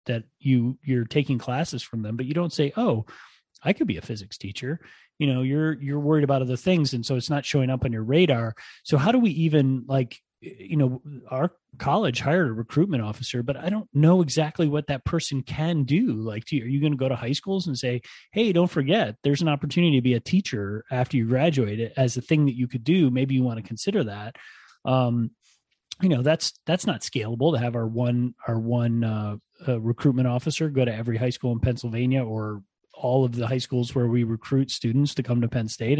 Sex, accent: male, American